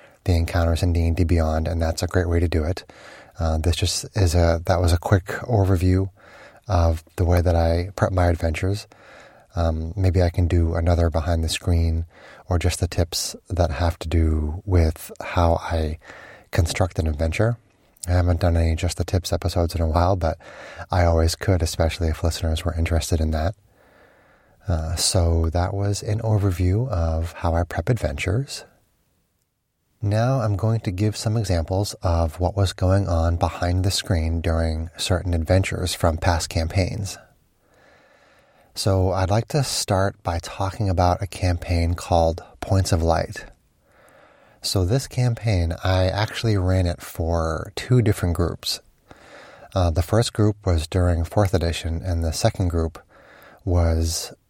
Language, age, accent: English, 30-49, American